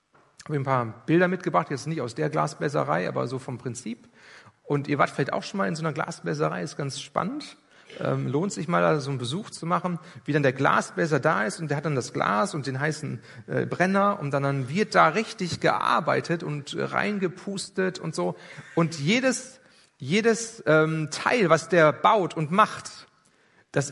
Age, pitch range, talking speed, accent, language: 40-59, 145-185 Hz, 195 wpm, German, German